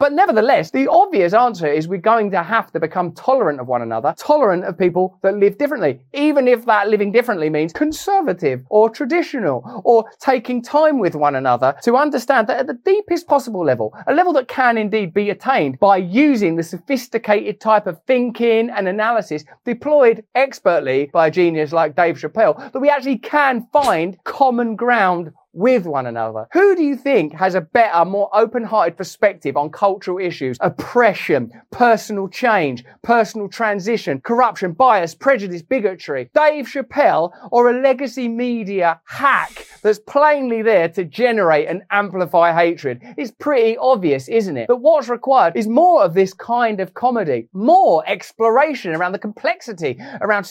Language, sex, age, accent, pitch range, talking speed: English, male, 30-49, British, 180-265 Hz, 165 wpm